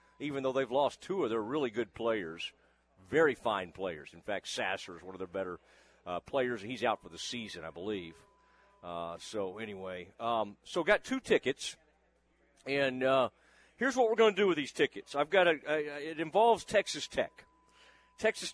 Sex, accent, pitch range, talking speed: male, American, 120-180 Hz, 190 wpm